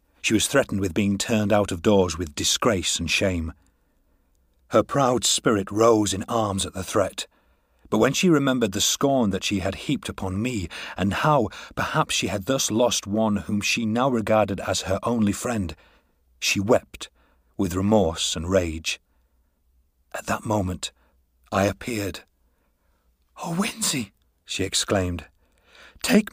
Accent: British